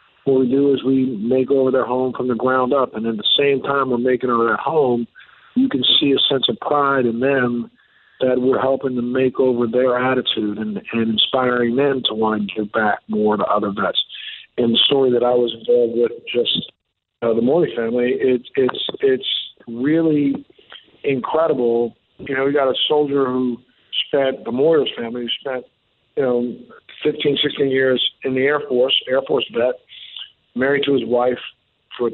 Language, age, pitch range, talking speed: English, 50-69, 125-140 Hz, 185 wpm